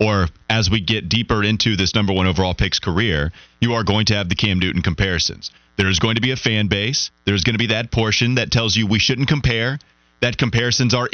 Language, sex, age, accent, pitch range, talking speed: English, male, 30-49, American, 95-130 Hz, 230 wpm